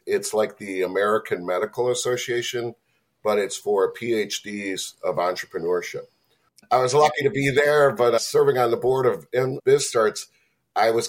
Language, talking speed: English, 145 wpm